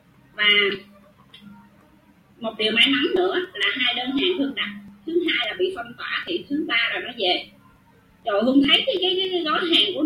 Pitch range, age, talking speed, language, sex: 215-310 Hz, 20-39, 195 wpm, Vietnamese, female